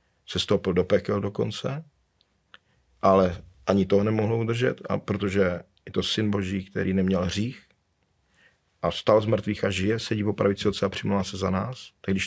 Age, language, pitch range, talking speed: 40-59, Slovak, 95-115 Hz, 170 wpm